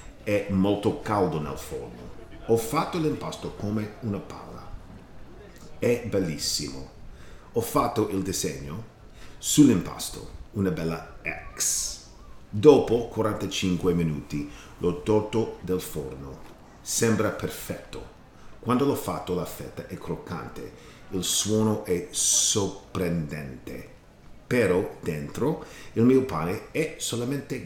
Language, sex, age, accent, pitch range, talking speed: English, male, 40-59, Italian, 85-115 Hz, 105 wpm